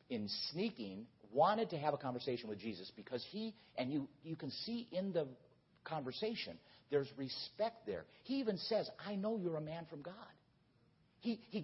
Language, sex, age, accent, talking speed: English, male, 50-69, American, 175 wpm